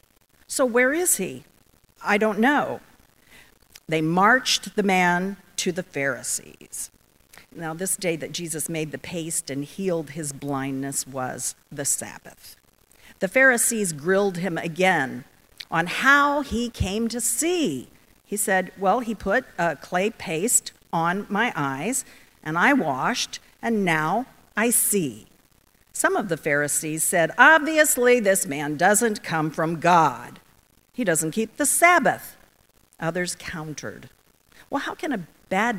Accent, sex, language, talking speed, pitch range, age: American, female, English, 135 wpm, 160-230 Hz, 50-69